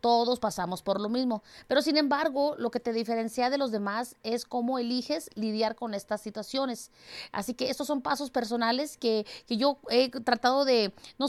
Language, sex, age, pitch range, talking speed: English, female, 30-49, 215-260 Hz, 185 wpm